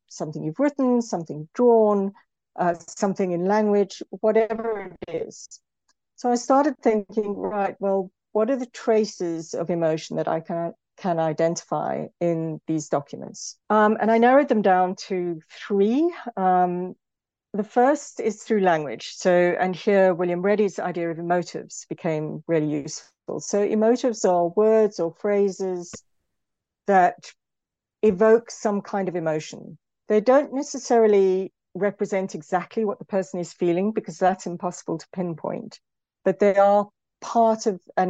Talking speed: 140 wpm